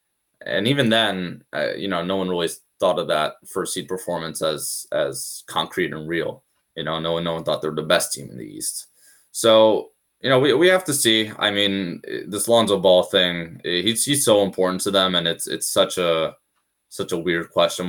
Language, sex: English, male